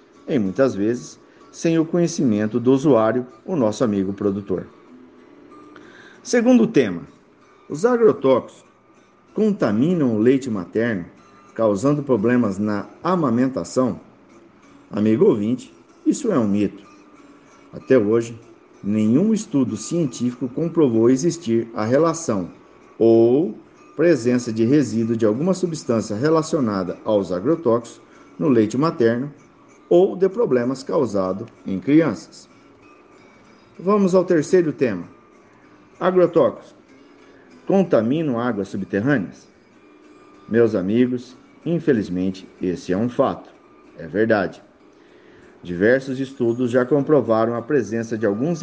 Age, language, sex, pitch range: 50-69, Portuguese, male, 115-170 Hz